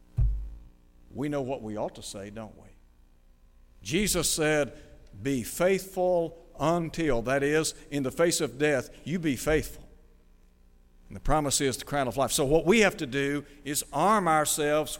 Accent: American